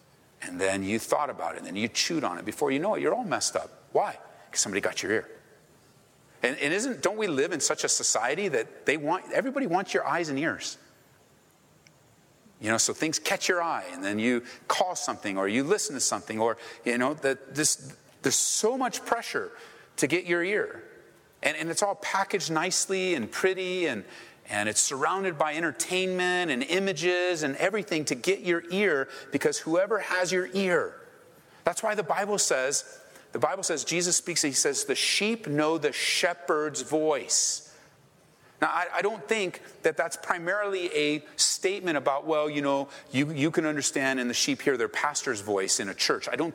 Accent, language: American, English